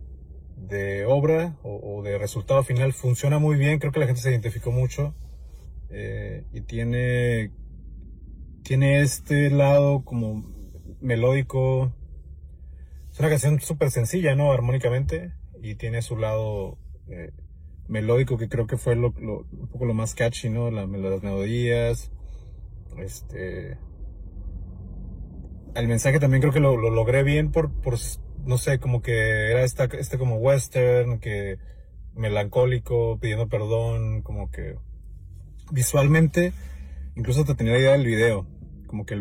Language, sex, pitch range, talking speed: Spanish, male, 95-130 Hz, 140 wpm